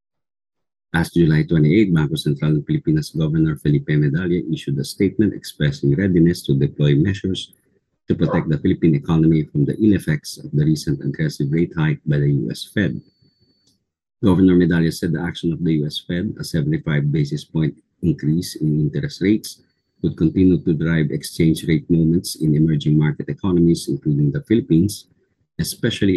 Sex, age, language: male, 50-69, English